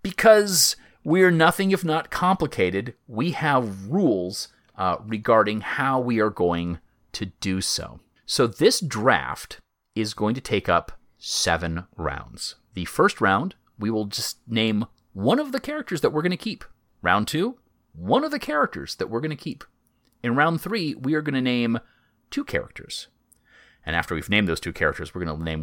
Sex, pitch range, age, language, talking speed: male, 95-155 Hz, 30-49, English, 180 wpm